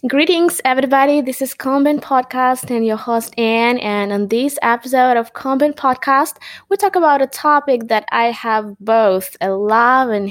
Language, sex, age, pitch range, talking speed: English, female, 20-39, 225-280 Hz, 170 wpm